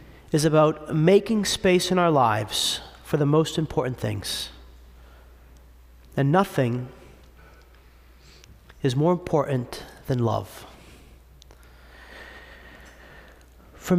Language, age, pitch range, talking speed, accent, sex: English, 40-59, 120-165 Hz, 85 wpm, American, male